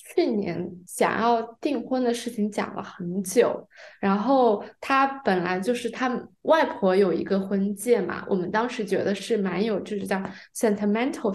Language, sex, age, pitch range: Chinese, female, 20-39, 190-225 Hz